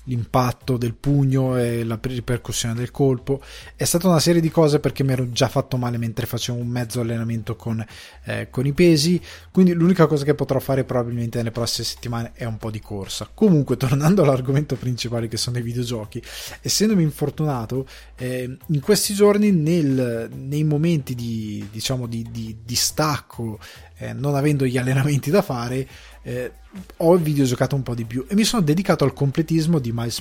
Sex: male